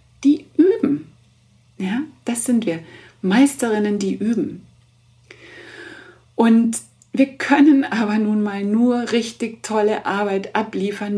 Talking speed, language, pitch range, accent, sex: 105 wpm, German, 175-230 Hz, German, female